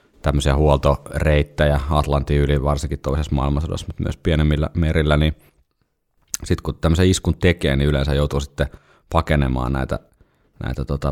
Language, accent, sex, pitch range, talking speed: Finnish, native, male, 70-85 Hz, 135 wpm